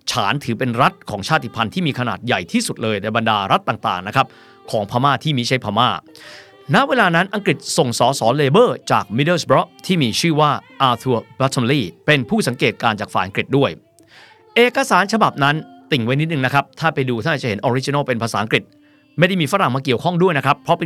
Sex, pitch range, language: male, 120-180 Hz, Thai